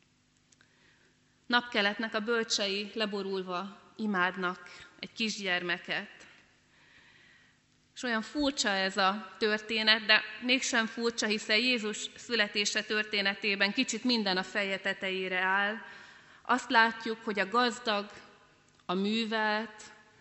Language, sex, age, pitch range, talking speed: Hungarian, female, 30-49, 185-220 Hz, 95 wpm